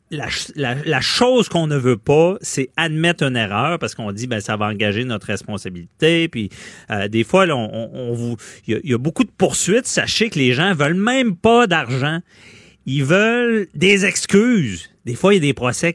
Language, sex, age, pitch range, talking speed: French, male, 40-59, 115-165 Hz, 210 wpm